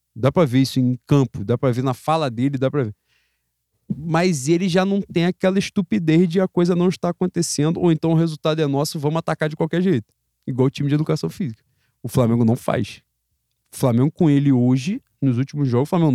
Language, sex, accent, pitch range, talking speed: Portuguese, male, Brazilian, 125-200 Hz, 220 wpm